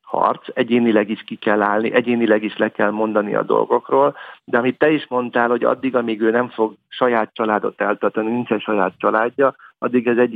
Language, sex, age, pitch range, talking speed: Hungarian, male, 50-69, 105-120 Hz, 190 wpm